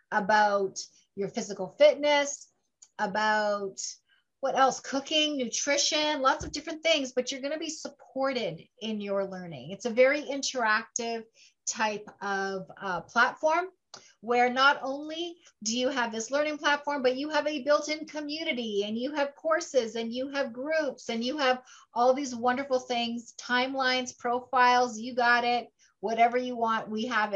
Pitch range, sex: 220-280 Hz, female